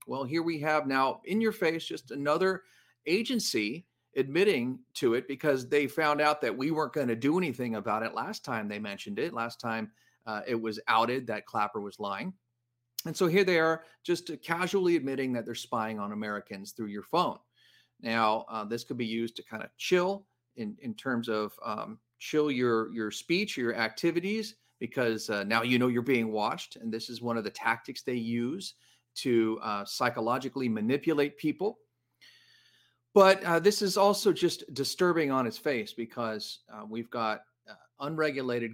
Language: English